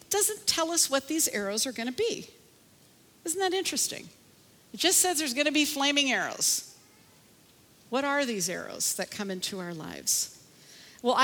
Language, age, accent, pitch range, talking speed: English, 50-69, American, 215-275 Hz, 170 wpm